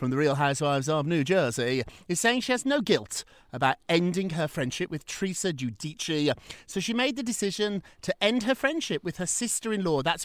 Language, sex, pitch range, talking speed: English, male, 135-210 Hz, 195 wpm